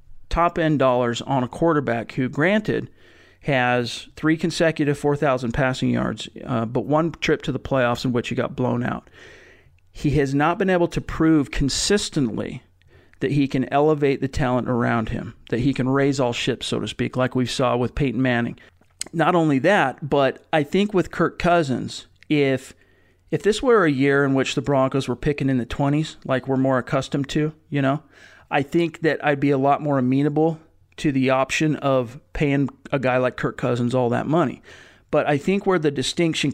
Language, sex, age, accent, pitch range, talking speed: English, male, 40-59, American, 125-150 Hz, 190 wpm